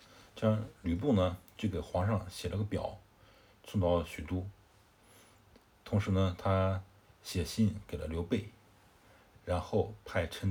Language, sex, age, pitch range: Chinese, male, 60-79, 90-110 Hz